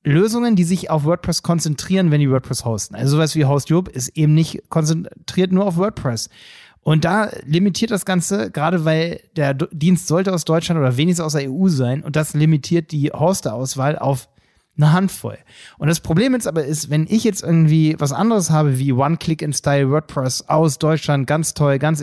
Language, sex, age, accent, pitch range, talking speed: German, male, 30-49, German, 145-185 Hz, 185 wpm